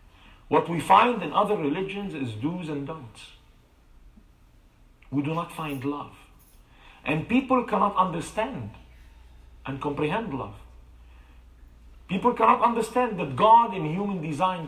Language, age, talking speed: English, 50-69, 125 wpm